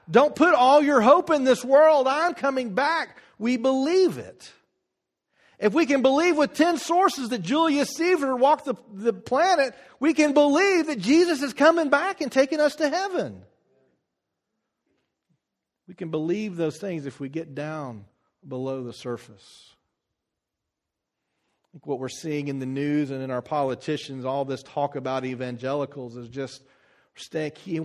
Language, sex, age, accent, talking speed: English, male, 40-59, American, 155 wpm